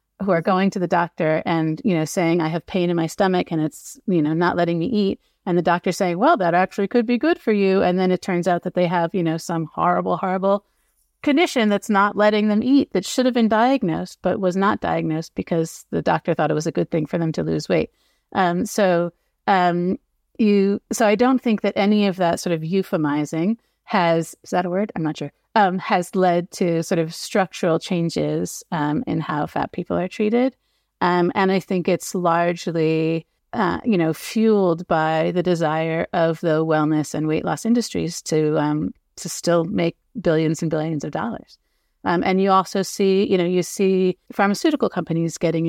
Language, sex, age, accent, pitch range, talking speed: English, female, 30-49, American, 165-200 Hz, 210 wpm